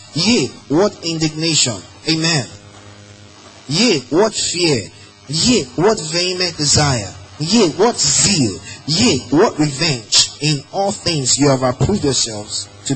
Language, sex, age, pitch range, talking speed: English, male, 20-39, 100-155 Hz, 115 wpm